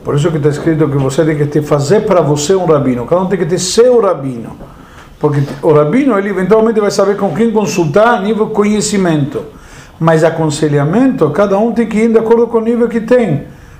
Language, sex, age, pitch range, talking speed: Portuguese, male, 50-69, 155-220 Hz, 210 wpm